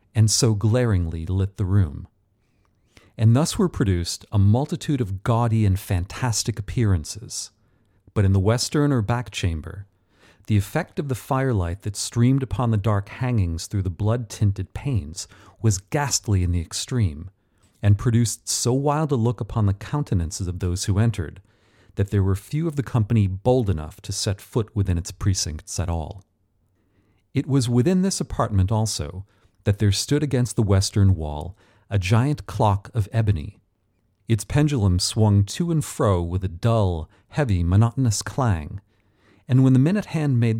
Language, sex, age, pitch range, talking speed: English, male, 40-59, 95-120 Hz, 165 wpm